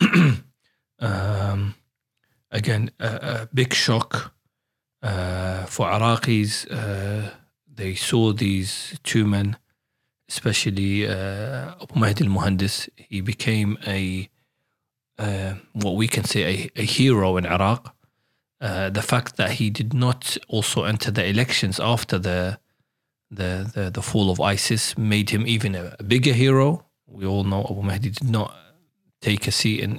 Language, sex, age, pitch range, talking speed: English, male, 40-59, 100-120 Hz, 140 wpm